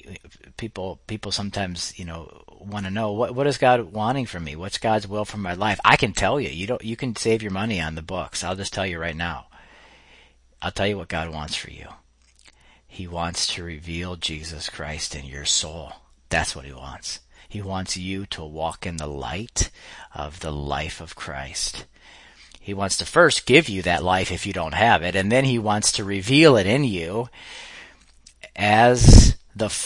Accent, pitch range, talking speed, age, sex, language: American, 75-100 Hz, 200 wpm, 40-59, male, English